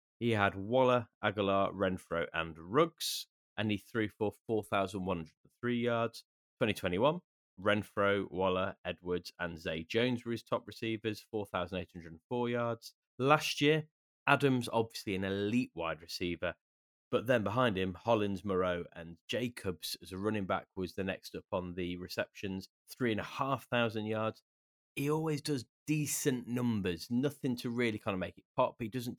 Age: 20-39